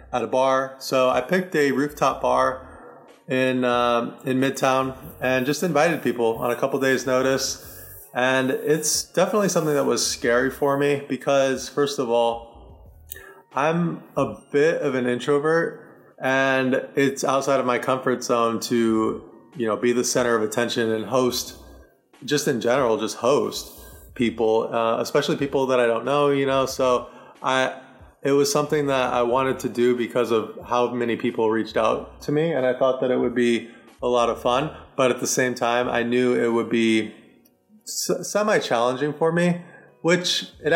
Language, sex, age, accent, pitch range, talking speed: English, male, 30-49, American, 115-135 Hz, 175 wpm